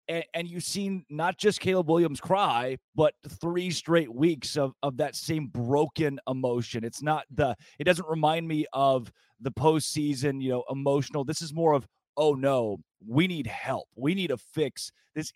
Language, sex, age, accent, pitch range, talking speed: English, male, 30-49, American, 135-170 Hz, 175 wpm